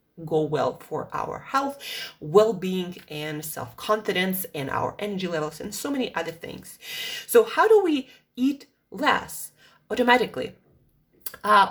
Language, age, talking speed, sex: English, 20-39, 130 wpm, female